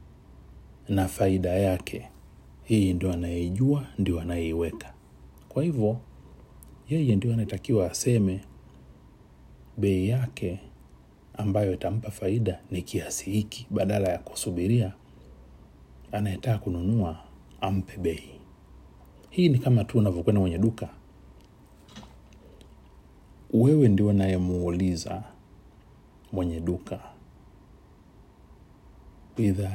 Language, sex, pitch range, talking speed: Swahili, male, 80-105 Hz, 85 wpm